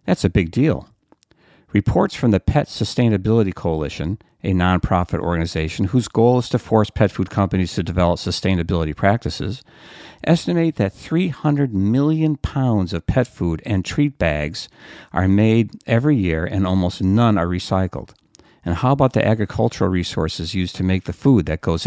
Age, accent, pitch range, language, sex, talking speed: 50-69, American, 90-115 Hz, English, male, 160 wpm